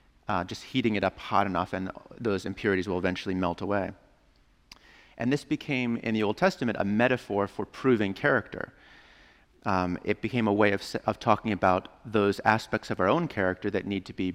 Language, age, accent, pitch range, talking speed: English, 30-49, American, 95-120 Hz, 190 wpm